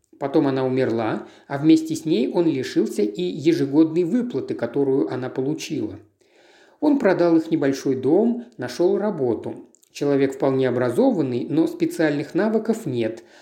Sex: male